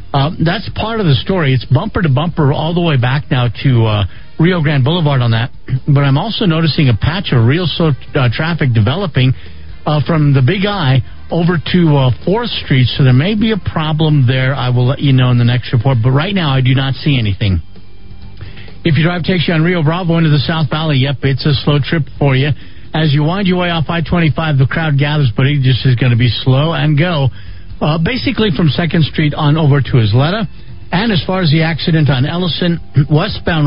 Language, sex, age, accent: English, male, 50-69, American